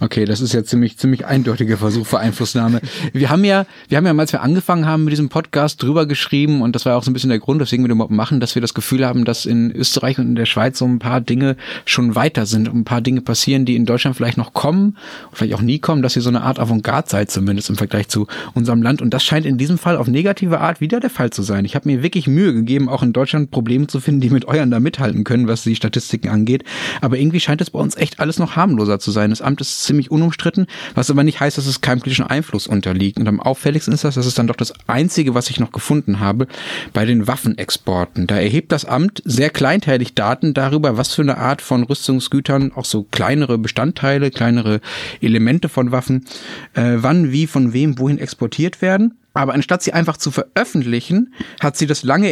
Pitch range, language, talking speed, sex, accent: 120-155 Hz, German, 235 wpm, male, German